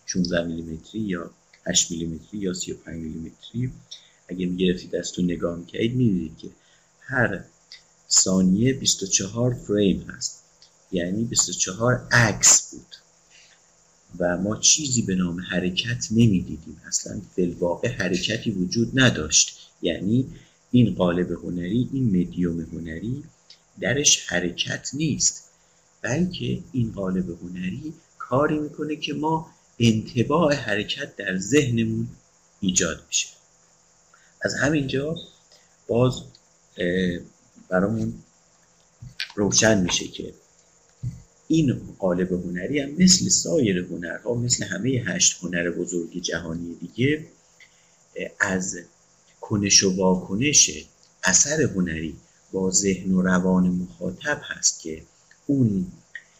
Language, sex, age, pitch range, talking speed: Persian, male, 50-69, 85-115 Hz, 100 wpm